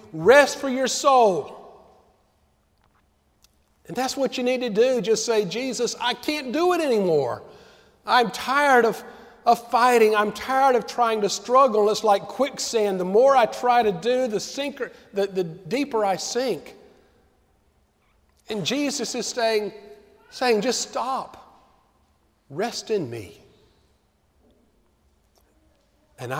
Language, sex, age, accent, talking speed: English, male, 50-69, American, 130 wpm